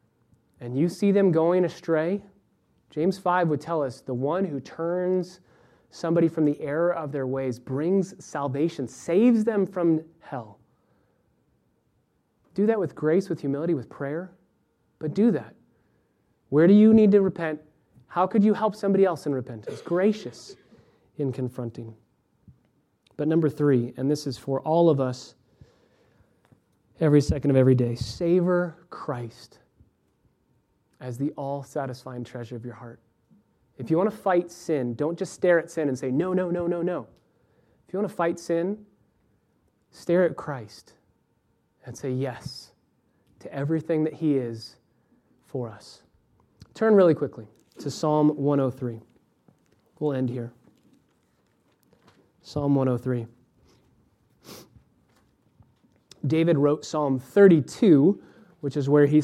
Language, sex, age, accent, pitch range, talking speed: English, male, 30-49, American, 130-175 Hz, 140 wpm